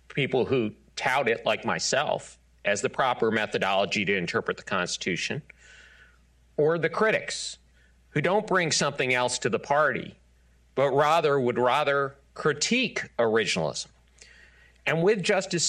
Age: 40-59